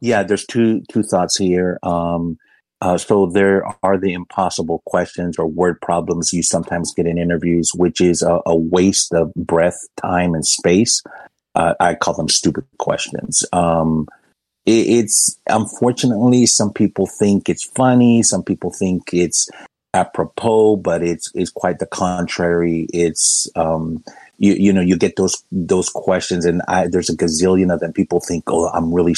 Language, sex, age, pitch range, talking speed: English, male, 50-69, 85-95 Hz, 165 wpm